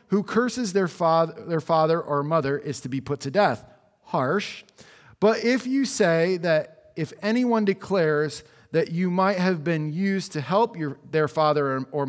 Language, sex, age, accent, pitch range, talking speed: English, male, 40-59, American, 150-200 Hz, 180 wpm